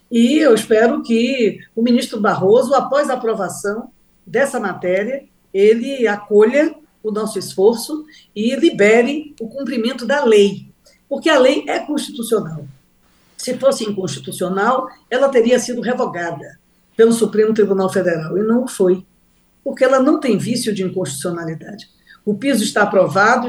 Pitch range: 195-245 Hz